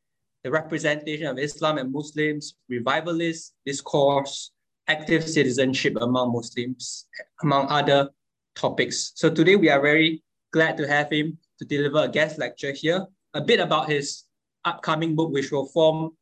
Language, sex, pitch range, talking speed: English, male, 130-155 Hz, 145 wpm